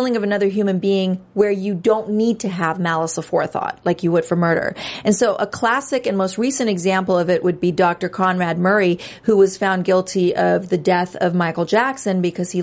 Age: 40-59